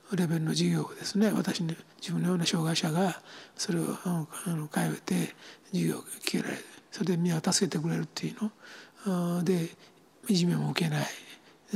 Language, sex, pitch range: Japanese, male, 165-195 Hz